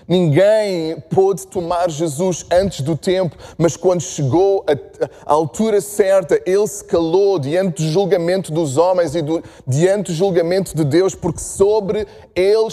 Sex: male